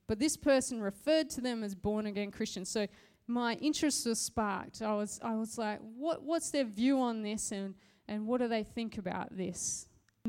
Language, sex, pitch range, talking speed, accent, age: English, female, 205-255 Hz, 205 wpm, Australian, 20-39